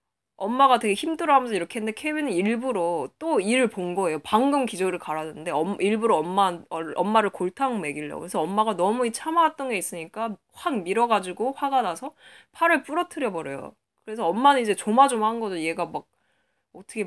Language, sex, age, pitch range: Korean, female, 20-39, 195-275 Hz